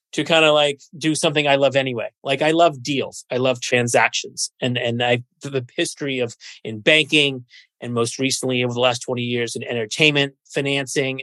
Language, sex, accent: English, male, American